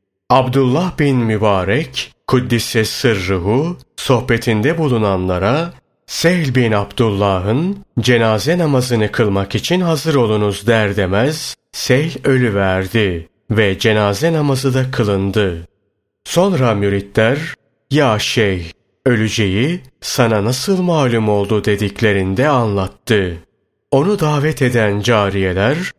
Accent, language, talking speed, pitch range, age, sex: native, Turkish, 90 wpm, 100-135 Hz, 30-49, male